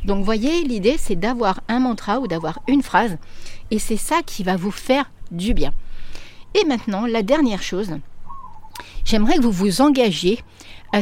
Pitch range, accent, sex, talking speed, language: 180-235 Hz, French, female, 170 wpm, French